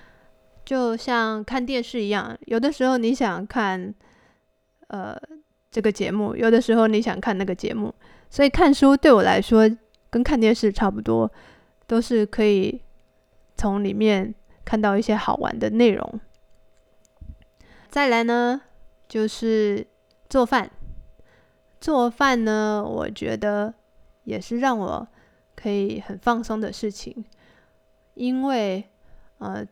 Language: Chinese